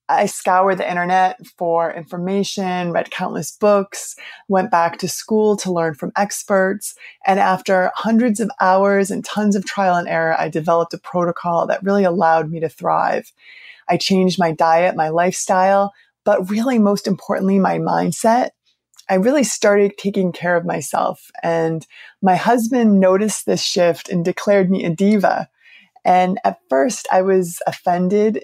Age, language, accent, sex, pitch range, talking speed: 20-39, English, American, female, 170-200 Hz, 155 wpm